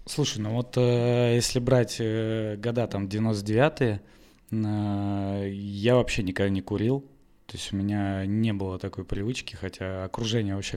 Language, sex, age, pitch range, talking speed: Russian, male, 20-39, 100-120 Hz, 135 wpm